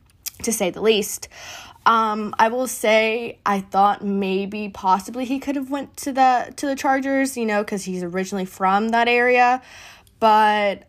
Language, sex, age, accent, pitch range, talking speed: English, female, 20-39, American, 190-245 Hz, 165 wpm